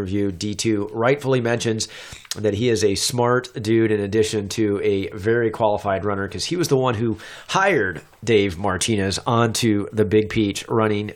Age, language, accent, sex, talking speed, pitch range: 30-49, English, American, male, 160 wpm, 100-120 Hz